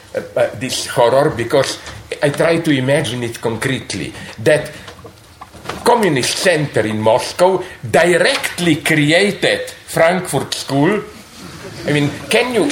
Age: 50-69